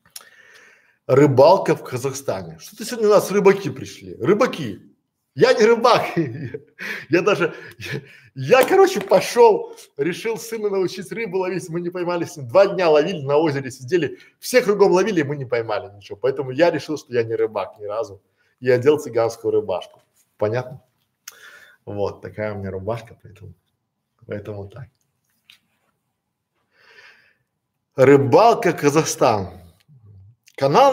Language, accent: Russian, native